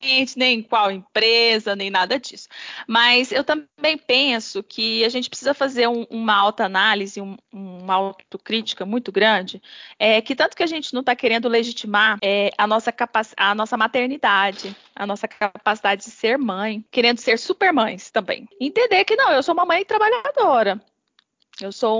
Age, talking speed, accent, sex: 20-39, 155 wpm, Brazilian, female